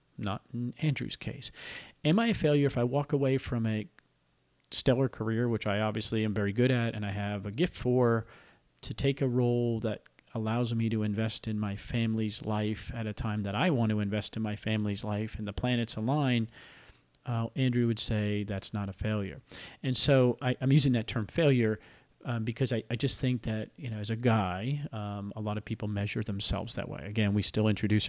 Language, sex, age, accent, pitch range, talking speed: English, male, 40-59, American, 105-125 Hz, 210 wpm